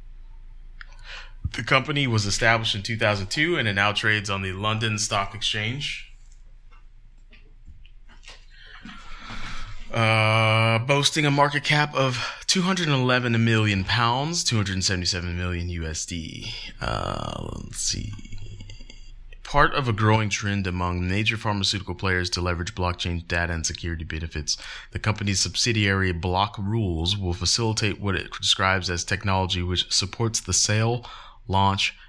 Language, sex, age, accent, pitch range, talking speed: English, male, 20-39, American, 95-120 Hz, 120 wpm